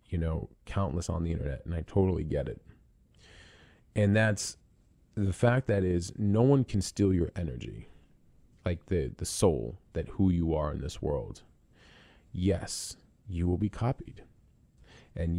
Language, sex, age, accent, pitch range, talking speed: English, male, 40-59, American, 85-110 Hz, 155 wpm